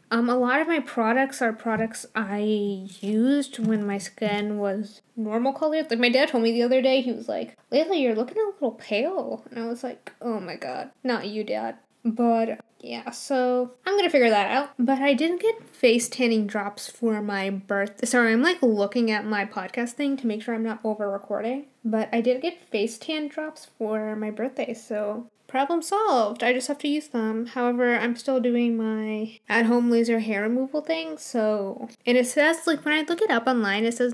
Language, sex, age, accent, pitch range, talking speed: English, female, 10-29, American, 220-280 Hz, 205 wpm